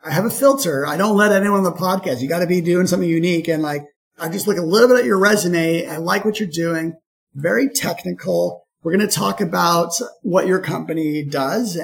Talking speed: 230 wpm